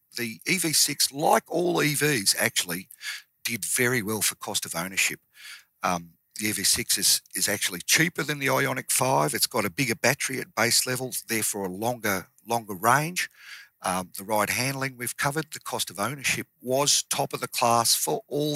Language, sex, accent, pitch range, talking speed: English, male, Australian, 105-140 Hz, 175 wpm